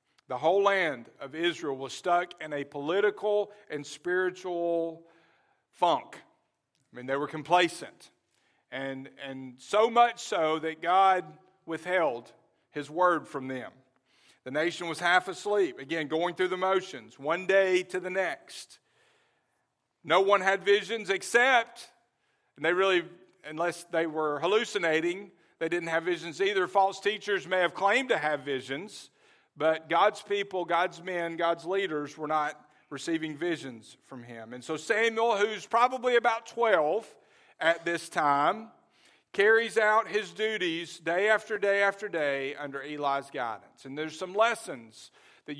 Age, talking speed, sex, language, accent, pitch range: 50-69, 145 wpm, male, English, American, 155-200 Hz